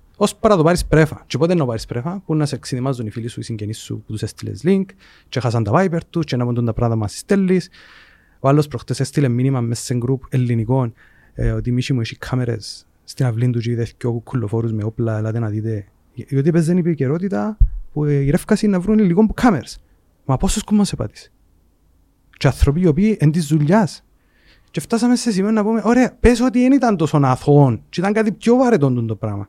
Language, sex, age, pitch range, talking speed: Greek, male, 30-49, 115-175 Hz, 100 wpm